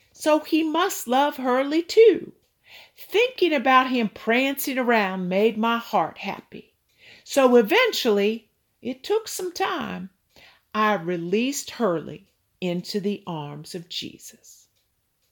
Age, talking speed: 50-69, 115 wpm